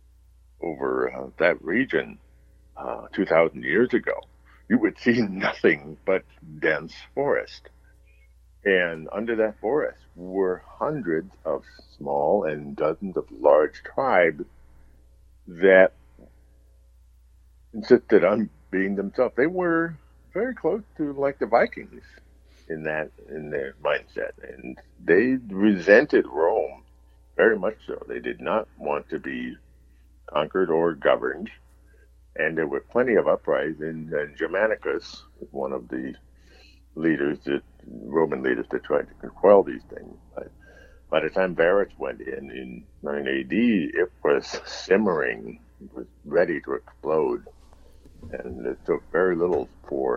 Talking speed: 125 wpm